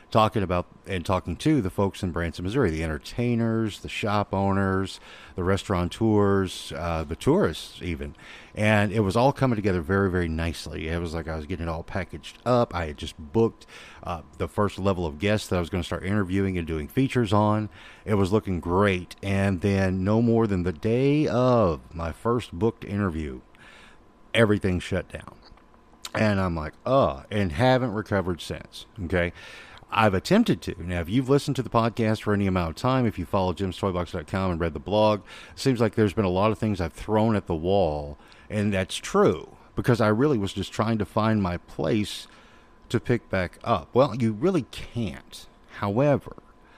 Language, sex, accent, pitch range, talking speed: English, male, American, 85-110 Hz, 190 wpm